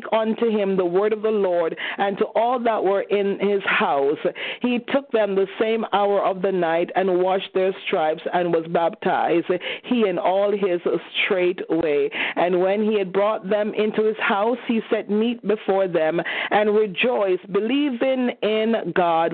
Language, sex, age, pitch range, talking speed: English, female, 40-59, 190-225 Hz, 175 wpm